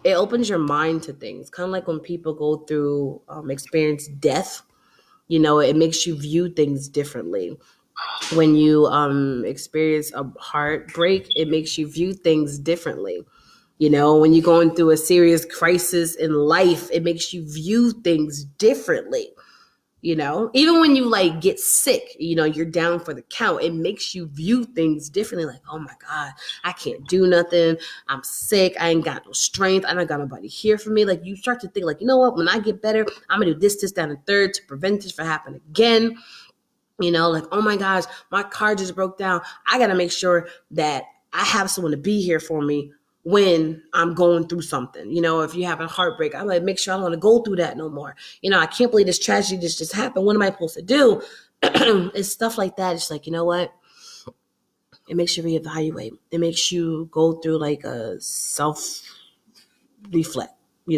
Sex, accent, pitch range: female, American, 155-200 Hz